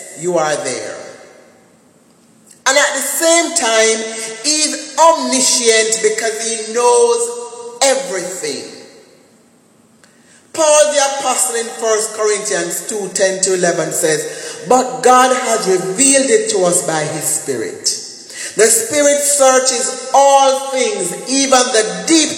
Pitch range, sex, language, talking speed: 200-270 Hz, male, English, 110 wpm